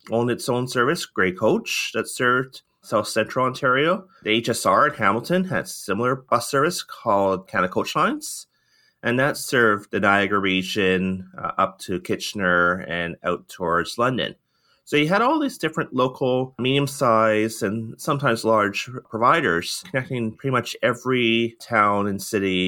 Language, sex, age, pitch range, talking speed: English, male, 30-49, 95-120 Hz, 150 wpm